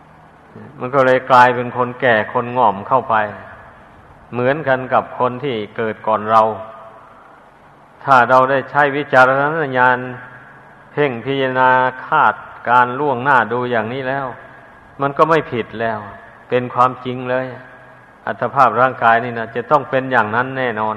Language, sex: Thai, male